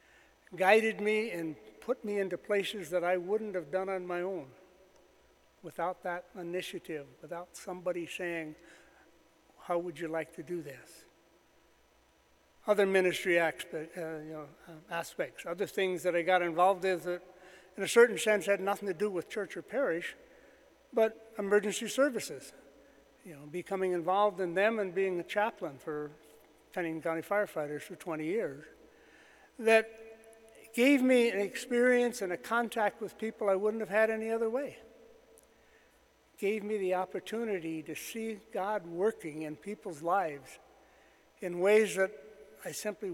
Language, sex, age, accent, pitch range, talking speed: English, male, 60-79, American, 170-215 Hz, 145 wpm